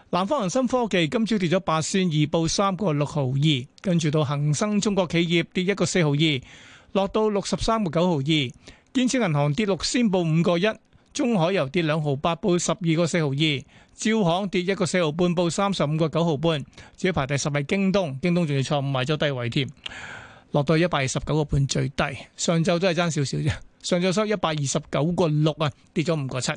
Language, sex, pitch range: Chinese, male, 150-185 Hz